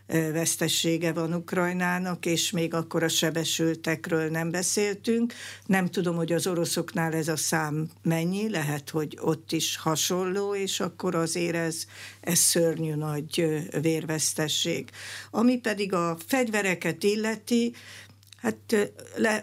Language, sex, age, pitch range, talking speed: Hungarian, female, 60-79, 160-195 Hz, 120 wpm